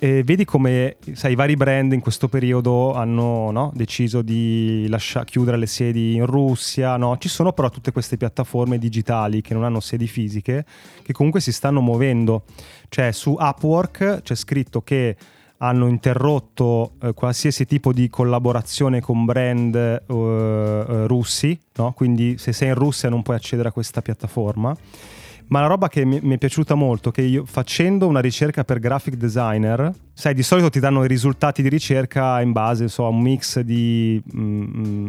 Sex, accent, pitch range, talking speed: male, native, 120-140 Hz, 160 wpm